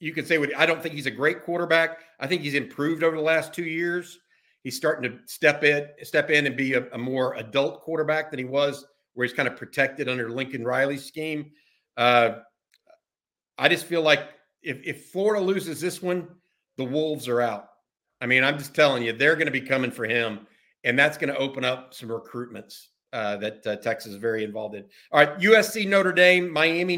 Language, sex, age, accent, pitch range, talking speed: English, male, 50-69, American, 135-175 Hz, 210 wpm